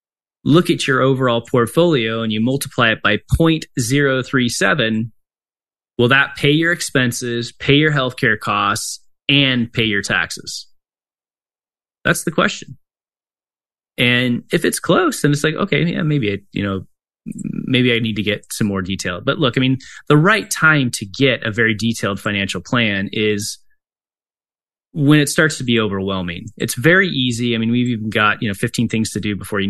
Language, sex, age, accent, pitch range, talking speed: English, male, 20-39, American, 105-135 Hz, 170 wpm